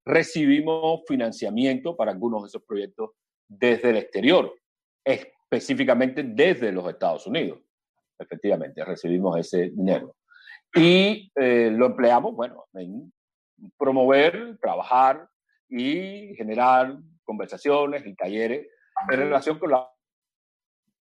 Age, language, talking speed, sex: 50-69, Spanish, 105 wpm, male